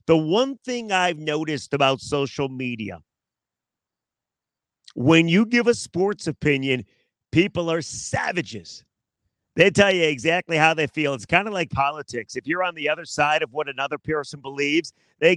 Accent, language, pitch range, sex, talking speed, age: American, English, 145-185 Hz, male, 160 wpm, 40-59